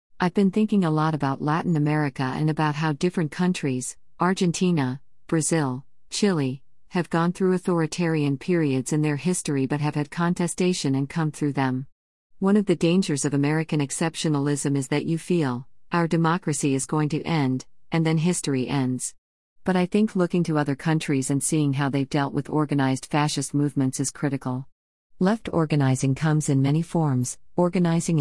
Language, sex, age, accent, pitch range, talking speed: English, female, 50-69, American, 135-170 Hz, 165 wpm